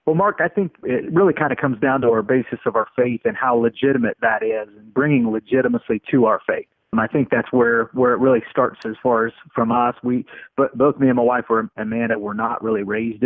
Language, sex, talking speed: English, male, 245 wpm